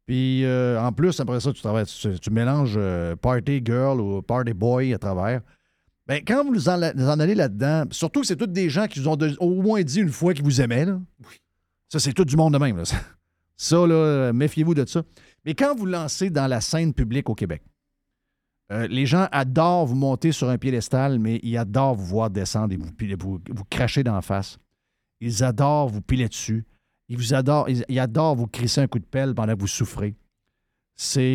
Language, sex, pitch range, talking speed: French, male, 110-150 Hz, 220 wpm